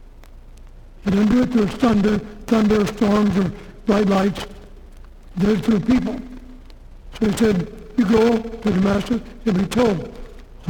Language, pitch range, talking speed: English, 180-220 Hz, 145 wpm